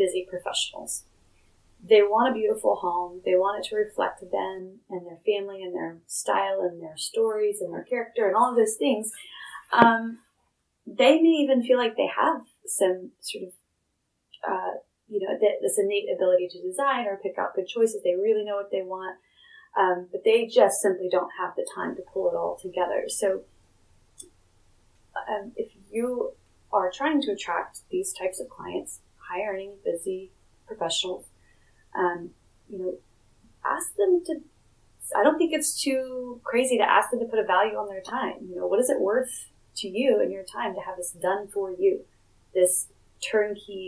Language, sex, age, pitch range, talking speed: English, female, 30-49, 180-295 Hz, 180 wpm